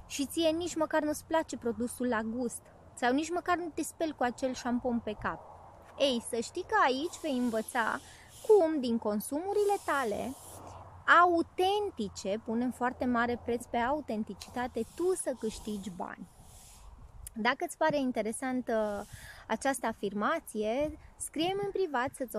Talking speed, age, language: 140 wpm, 20-39, Romanian